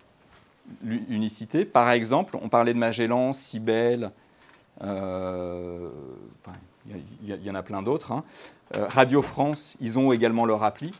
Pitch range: 115-155 Hz